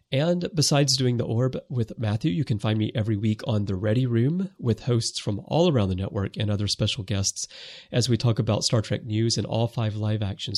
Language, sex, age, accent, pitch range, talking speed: English, male, 30-49, American, 105-135 Hz, 220 wpm